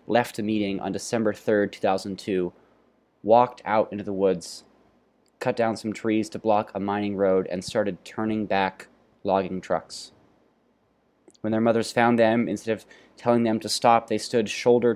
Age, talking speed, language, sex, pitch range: 20-39, 165 wpm, English, male, 95-110 Hz